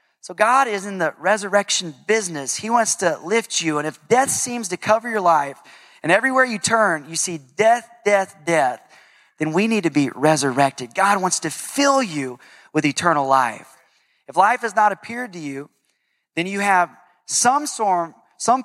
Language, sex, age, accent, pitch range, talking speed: English, male, 30-49, American, 165-235 Hz, 175 wpm